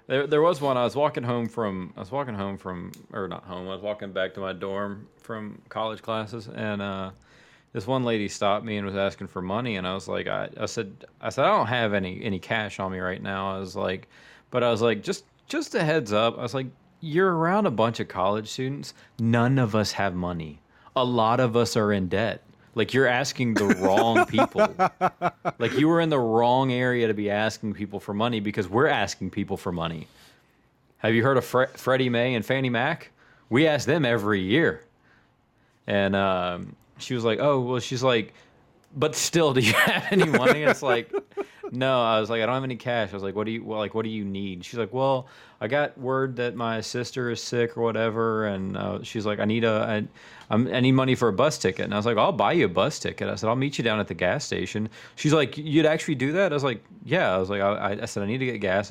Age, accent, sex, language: 30-49, American, male, English